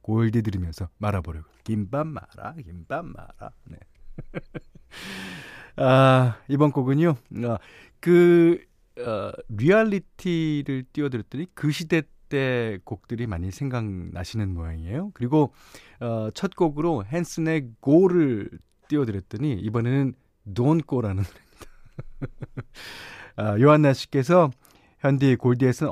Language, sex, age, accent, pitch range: Korean, male, 40-59, native, 110-160 Hz